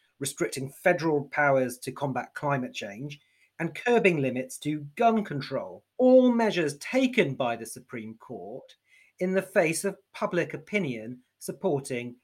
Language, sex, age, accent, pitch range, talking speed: English, male, 40-59, British, 135-190 Hz, 130 wpm